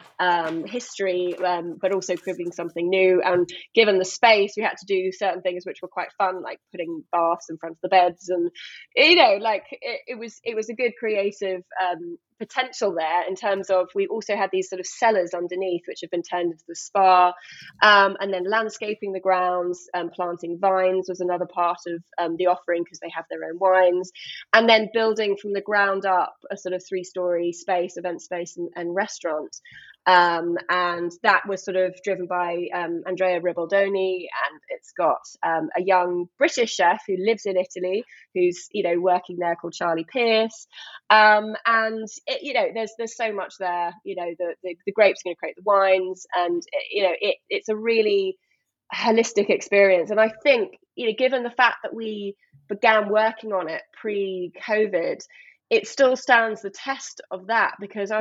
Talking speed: 195 wpm